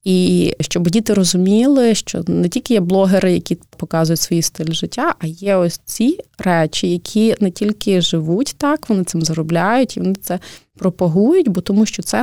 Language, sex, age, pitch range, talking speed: Ukrainian, female, 20-39, 170-205 Hz, 170 wpm